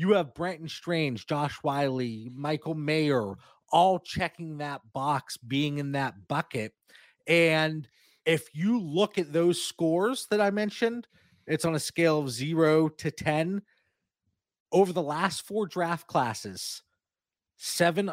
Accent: American